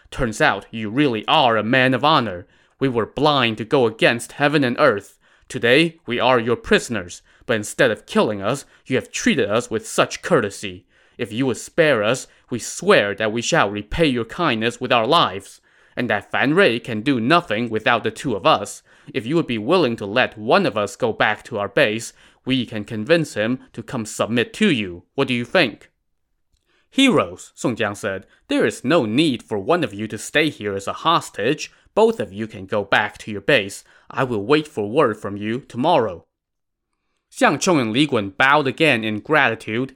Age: 20-39